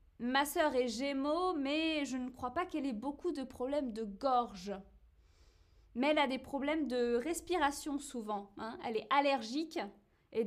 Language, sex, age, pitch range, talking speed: French, female, 20-39, 235-315 Hz, 165 wpm